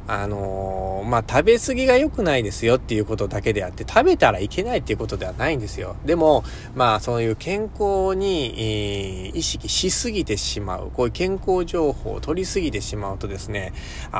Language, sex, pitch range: Japanese, male, 100-140 Hz